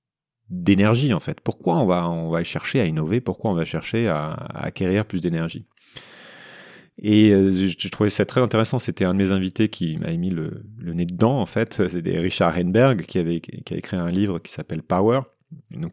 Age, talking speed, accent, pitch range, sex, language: 30-49, 210 wpm, French, 90-125 Hz, male, French